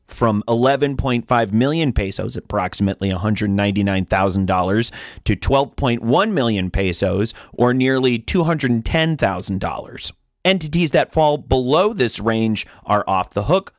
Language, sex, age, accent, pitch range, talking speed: English, male, 30-49, American, 105-135 Hz, 100 wpm